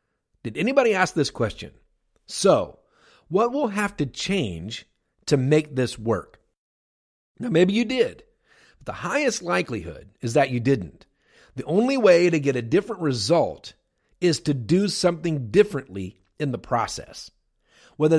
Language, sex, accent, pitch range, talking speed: English, male, American, 115-175 Hz, 145 wpm